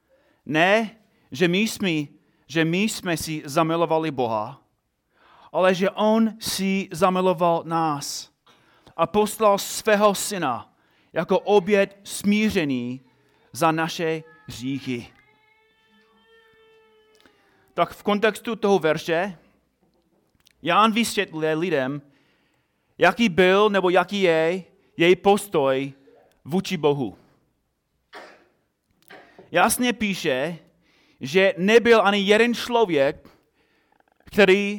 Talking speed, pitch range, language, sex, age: 90 wpm, 155-215 Hz, Czech, male, 30-49